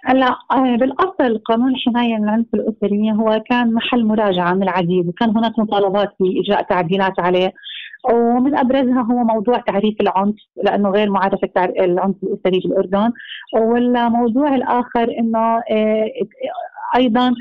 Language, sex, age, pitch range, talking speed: Arabic, female, 30-49, 215-255 Hz, 120 wpm